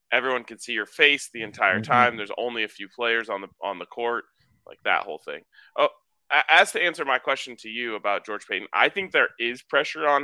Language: English